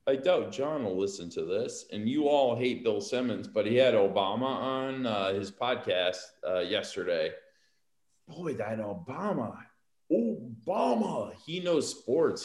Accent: American